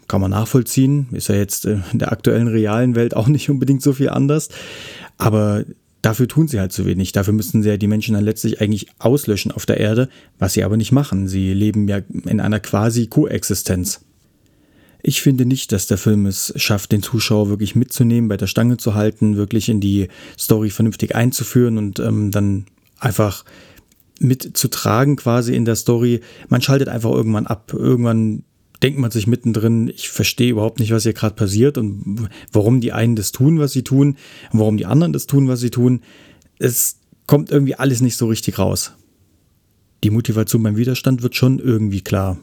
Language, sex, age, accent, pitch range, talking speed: German, male, 30-49, German, 105-125 Hz, 190 wpm